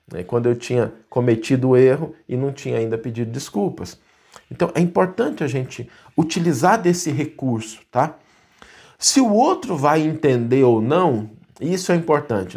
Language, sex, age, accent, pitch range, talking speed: Portuguese, male, 50-69, Brazilian, 115-165 Hz, 145 wpm